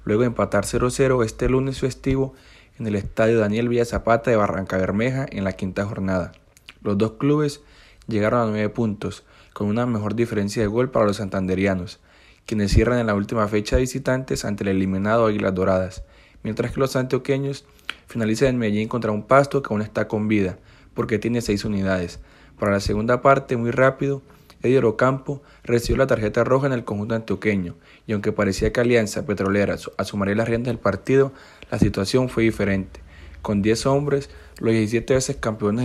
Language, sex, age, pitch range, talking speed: Spanish, male, 30-49, 100-125 Hz, 175 wpm